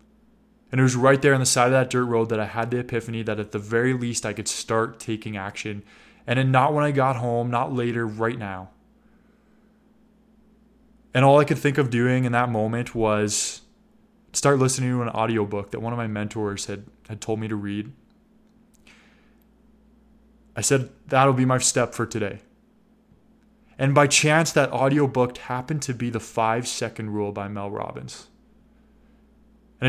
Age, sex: 20-39, male